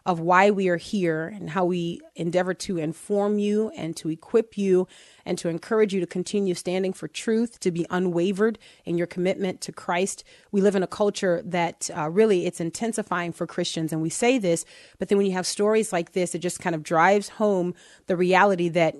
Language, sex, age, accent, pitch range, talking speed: English, female, 30-49, American, 170-200 Hz, 210 wpm